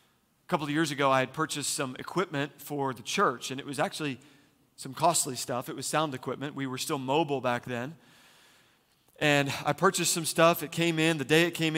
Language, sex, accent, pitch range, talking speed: English, male, American, 135-165 Hz, 215 wpm